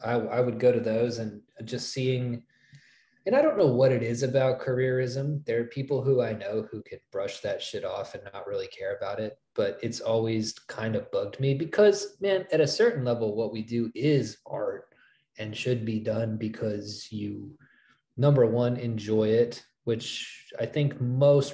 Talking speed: 190 wpm